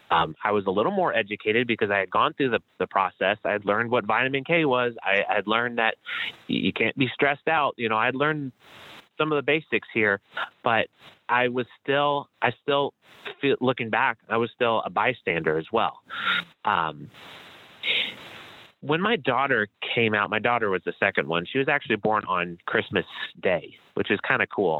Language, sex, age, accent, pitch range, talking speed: English, male, 30-49, American, 105-140 Hz, 195 wpm